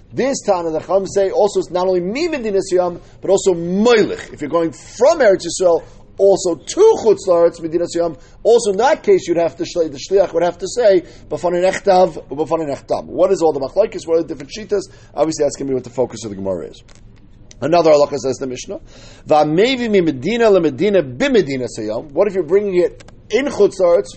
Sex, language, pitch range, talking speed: male, English, 145-200 Hz, 205 wpm